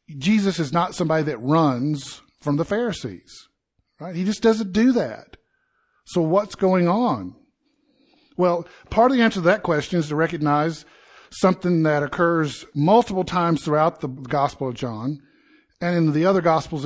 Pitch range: 150-215 Hz